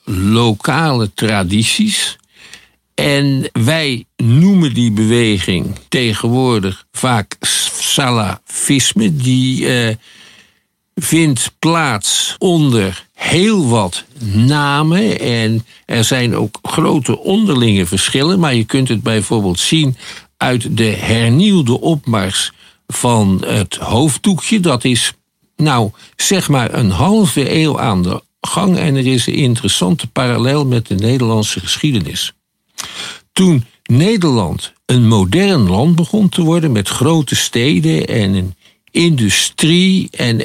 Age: 50-69